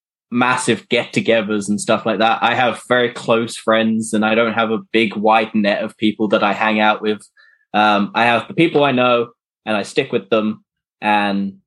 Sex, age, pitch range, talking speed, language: male, 10-29, 115-165 Hz, 205 wpm, English